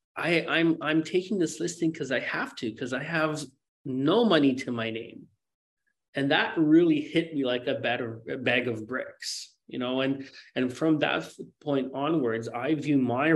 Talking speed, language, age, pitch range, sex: 185 wpm, English, 30-49, 120-155 Hz, male